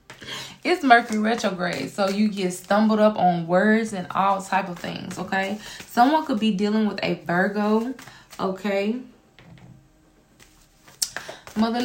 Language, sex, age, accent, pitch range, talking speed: English, female, 20-39, American, 190-225 Hz, 125 wpm